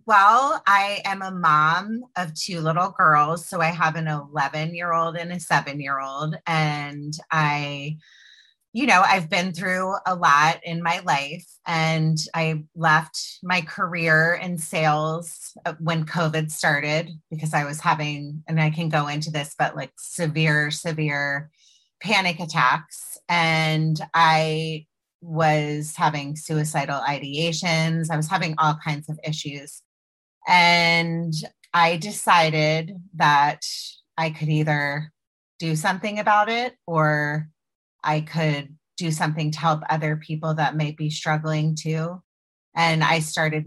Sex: female